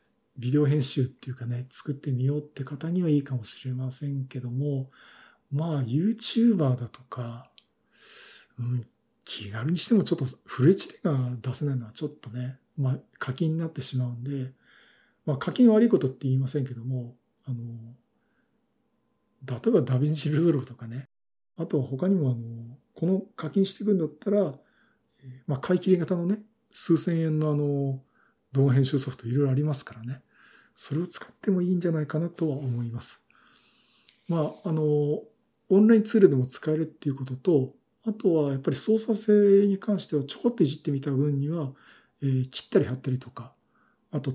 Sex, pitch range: male, 130-190 Hz